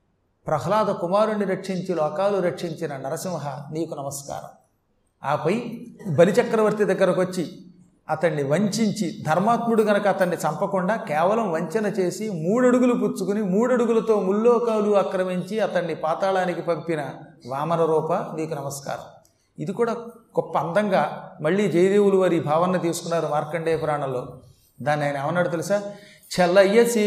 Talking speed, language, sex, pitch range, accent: 110 wpm, Telugu, male, 160-210 Hz, native